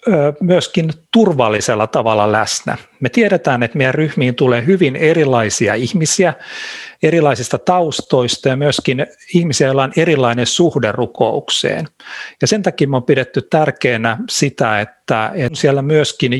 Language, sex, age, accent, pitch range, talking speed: Finnish, male, 50-69, native, 115-155 Hz, 125 wpm